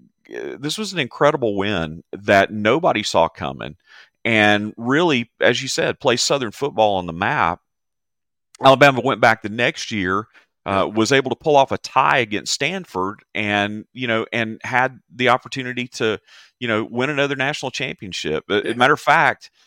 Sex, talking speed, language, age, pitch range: male, 170 wpm, English, 40-59, 95-125 Hz